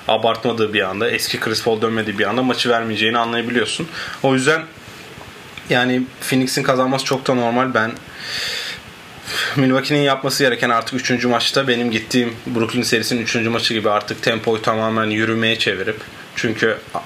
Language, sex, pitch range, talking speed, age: Turkish, male, 110-125 Hz, 140 wpm, 30-49